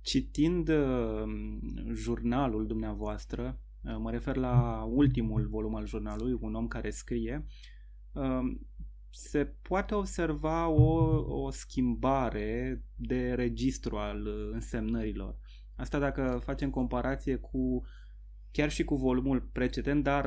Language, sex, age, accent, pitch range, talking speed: Romanian, male, 20-39, native, 110-140 Hz, 115 wpm